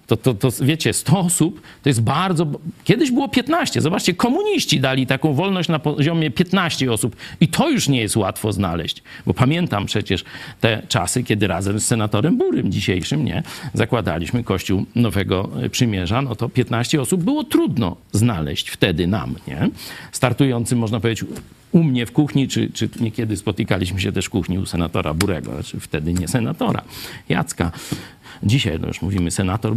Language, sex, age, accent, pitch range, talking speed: Polish, male, 50-69, native, 105-145 Hz, 165 wpm